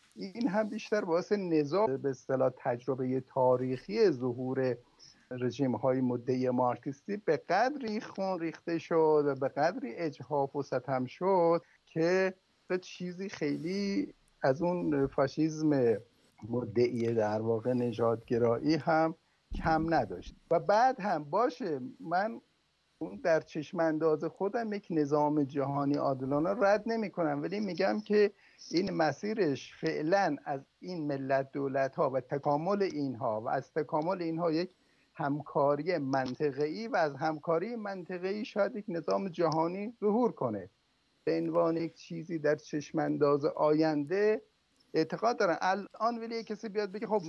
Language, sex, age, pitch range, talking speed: Persian, male, 50-69, 140-190 Hz, 130 wpm